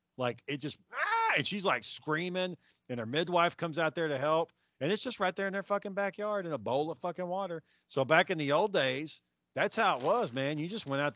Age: 40-59